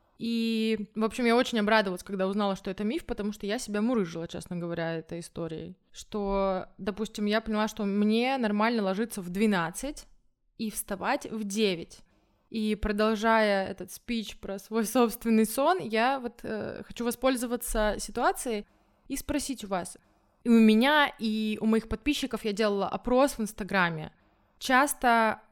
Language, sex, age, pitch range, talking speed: Russian, female, 20-39, 200-235 Hz, 155 wpm